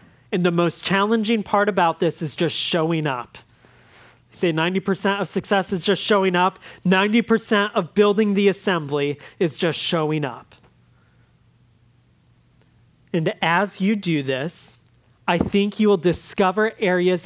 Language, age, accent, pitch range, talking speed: English, 30-49, American, 170-210 Hz, 135 wpm